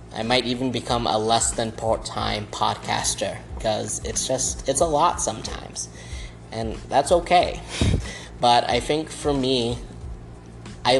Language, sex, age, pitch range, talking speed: English, male, 20-39, 110-130 Hz, 135 wpm